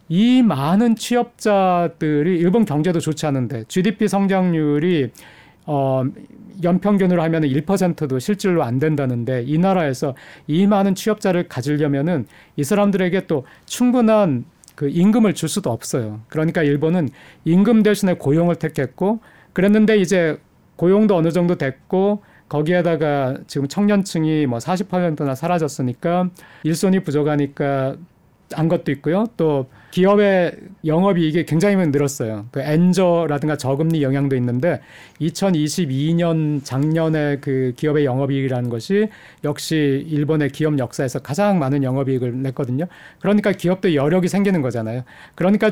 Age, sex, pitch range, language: 40-59, male, 145-185 Hz, Korean